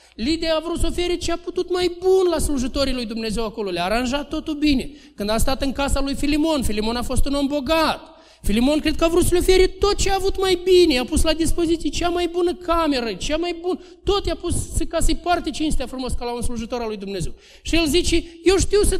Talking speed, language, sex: 245 wpm, Romanian, male